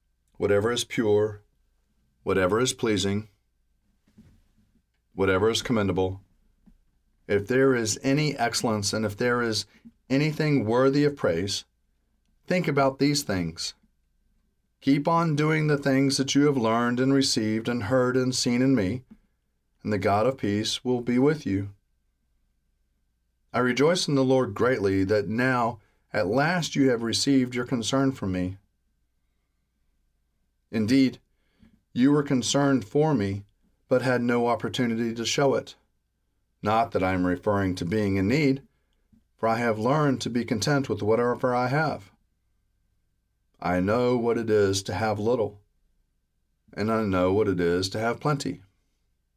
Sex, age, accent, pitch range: male, 40-59, American, 95-130 Hz